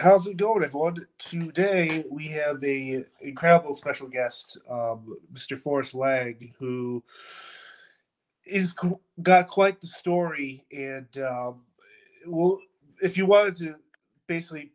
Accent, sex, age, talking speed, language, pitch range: American, male, 30-49, 120 wpm, English, 135-165 Hz